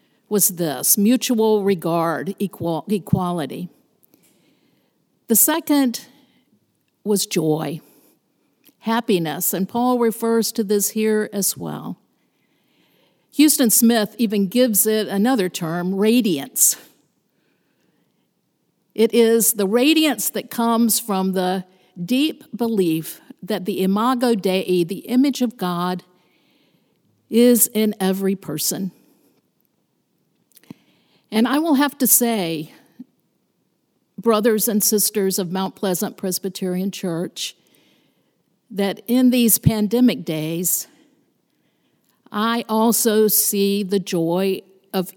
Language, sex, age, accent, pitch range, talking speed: English, female, 50-69, American, 185-230 Hz, 95 wpm